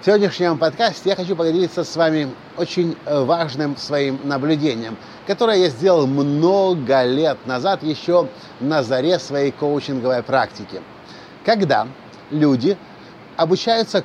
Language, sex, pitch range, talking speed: Russian, male, 150-200 Hz, 115 wpm